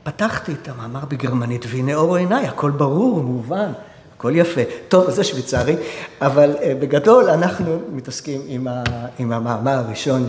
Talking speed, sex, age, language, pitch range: 140 wpm, male, 50-69, Hebrew, 140-215 Hz